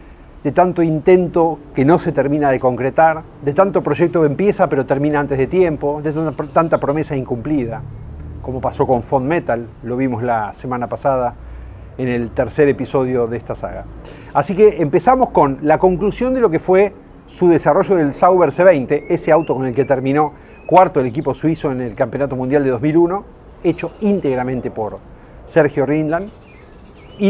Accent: Argentinian